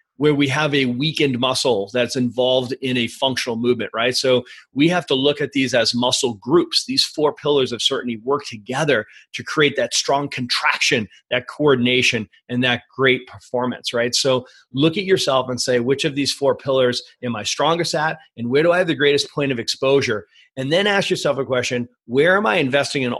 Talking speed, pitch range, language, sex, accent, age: 200 wpm, 125-155 Hz, English, male, American, 30-49